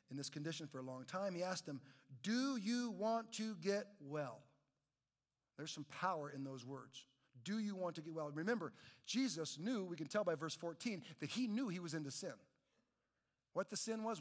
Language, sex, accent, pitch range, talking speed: English, male, American, 140-210 Hz, 205 wpm